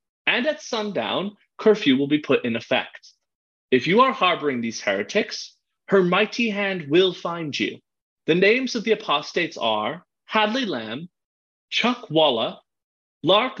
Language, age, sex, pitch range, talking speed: English, 30-49, male, 130-205 Hz, 140 wpm